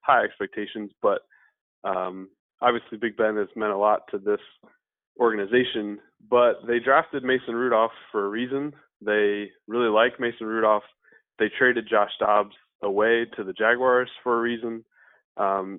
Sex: male